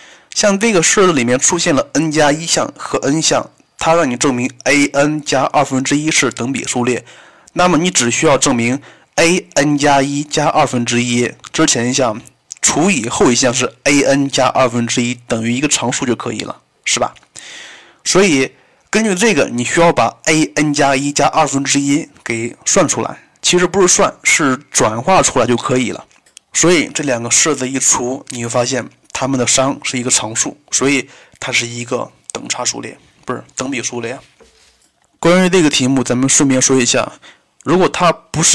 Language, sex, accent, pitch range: Chinese, male, native, 125-150 Hz